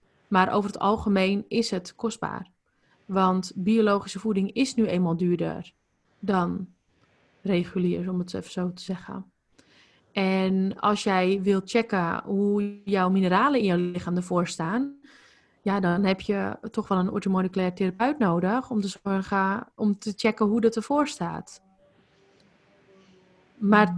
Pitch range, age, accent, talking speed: 185-220 Hz, 20-39, Dutch, 140 wpm